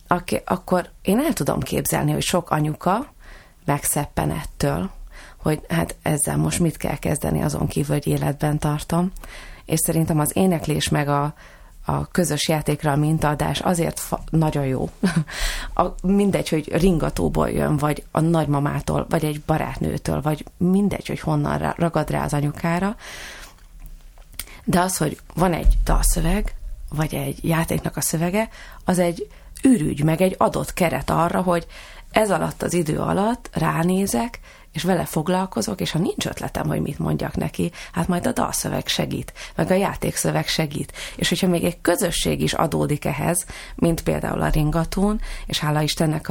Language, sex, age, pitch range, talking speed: Hungarian, female, 30-49, 145-175 Hz, 155 wpm